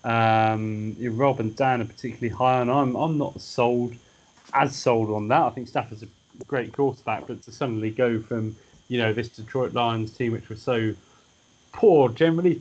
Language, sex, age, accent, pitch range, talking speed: English, male, 30-49, British, 120-155 Hz, 185 wpm